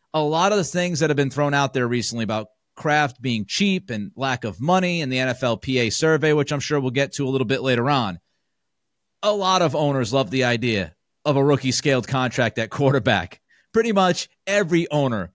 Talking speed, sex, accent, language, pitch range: 210 wpm, male, American, English, 130-165 Hz